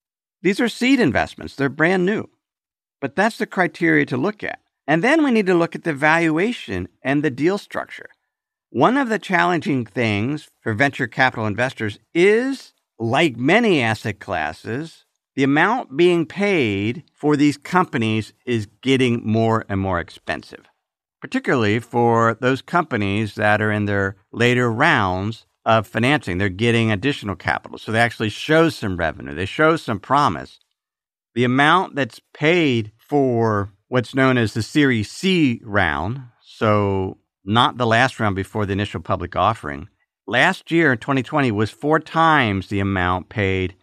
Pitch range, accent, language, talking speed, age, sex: 105-150 Hz, American, English, 155 wpm, 50-69, male